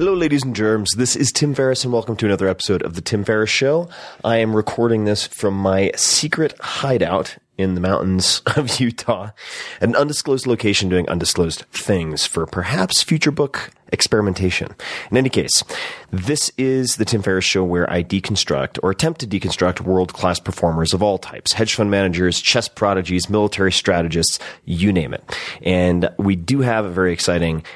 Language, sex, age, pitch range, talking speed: English, male, 30-49, 90-115 Hz, 175 wpm